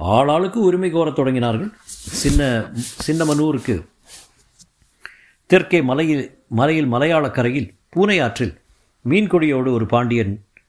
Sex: male